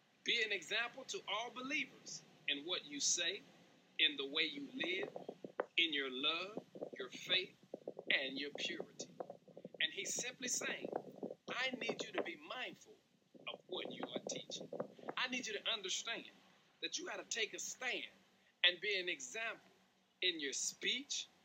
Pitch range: 200-340 Hz